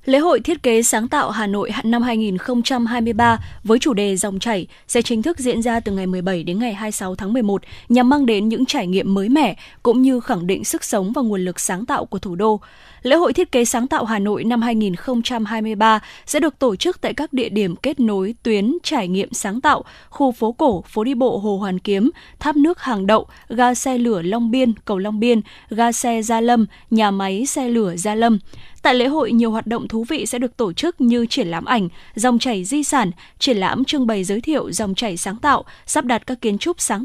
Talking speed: 230 wpm